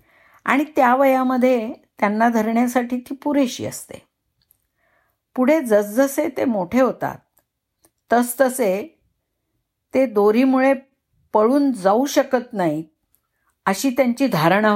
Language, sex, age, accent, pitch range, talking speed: Marathi, female, 50-69, native, 185-255 Hz, 95 wpm